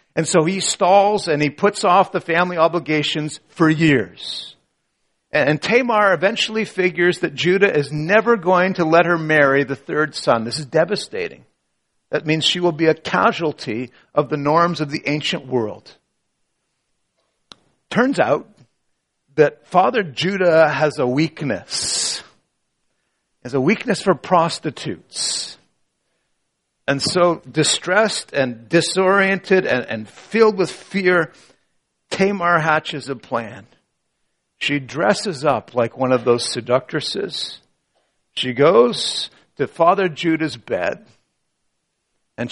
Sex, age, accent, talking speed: male, 50-69, American, 125 wpm